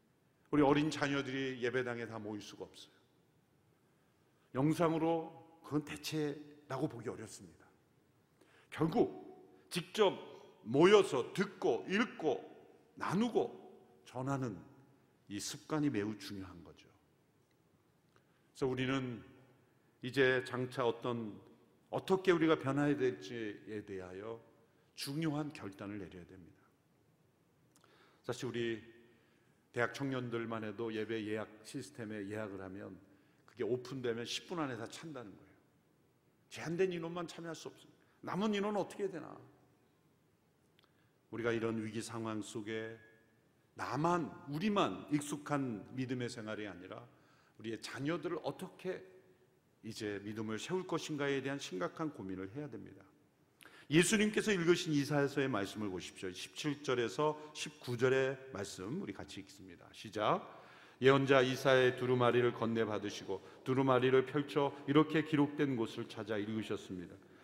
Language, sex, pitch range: Korean, male, 110-150 Hz